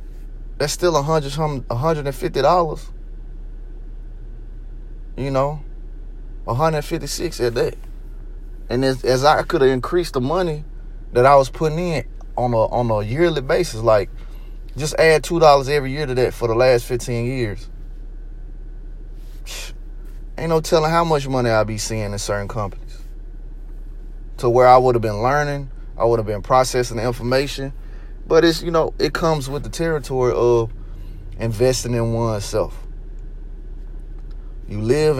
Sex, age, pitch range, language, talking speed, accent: male, 20-39, 115-140 Hz, English, 140 wpm, American